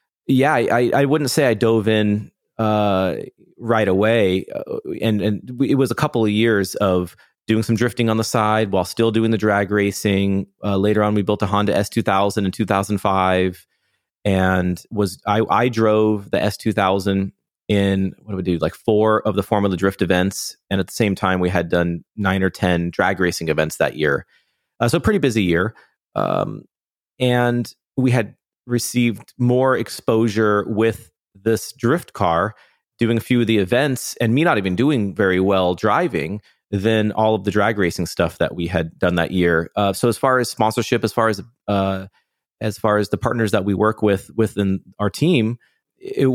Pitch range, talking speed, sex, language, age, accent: 95-115 Hz, 190 wpm, male, English, 30-49, American